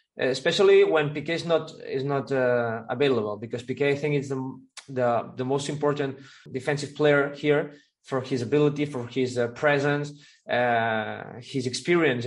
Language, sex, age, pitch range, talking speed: Polish, male, 20-39, 135-160 Hz, 155 wpm